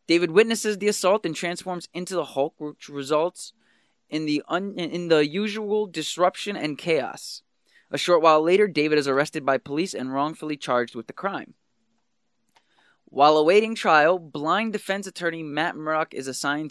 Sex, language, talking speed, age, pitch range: male, English, 160 wpm, 20-39, 140-175 Hz